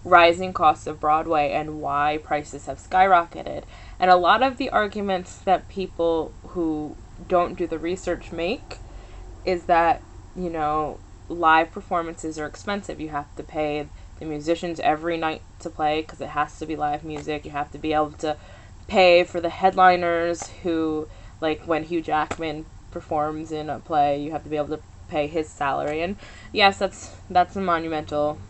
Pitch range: 150-185 Hz